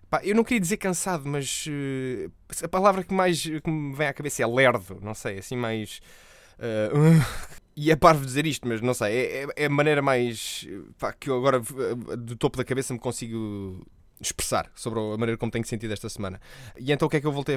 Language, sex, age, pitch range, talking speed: Portuguese, male, 20-39, 105-135 Hz, 215 wpm